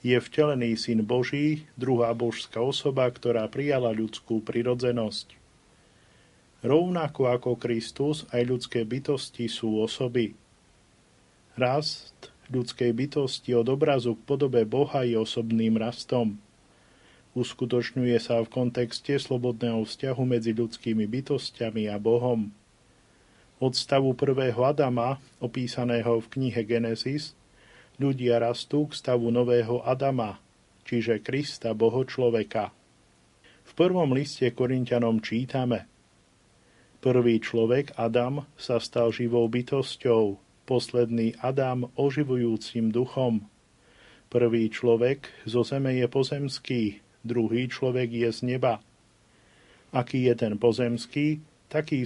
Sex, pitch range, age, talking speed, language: male, 115-130 Hz, 40-59, 105 wpm, Slovak